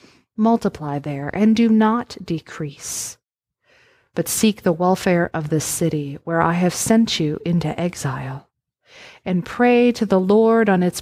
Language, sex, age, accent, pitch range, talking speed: English, female, 40-59, American, 165-225 Hz, 145 wpm